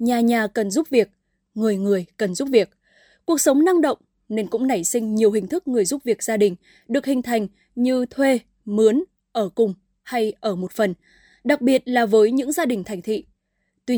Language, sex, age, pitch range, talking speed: Vietnamese, female, 10-29, 215-280 Hz, 205 wpm